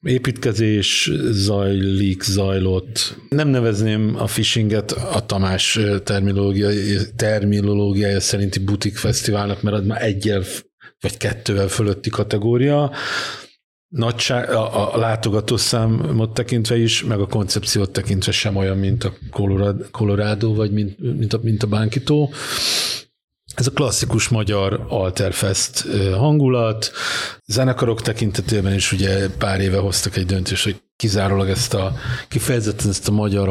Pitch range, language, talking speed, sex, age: 100-115 Hz, Hungarian, 120 wpm, male, 50-69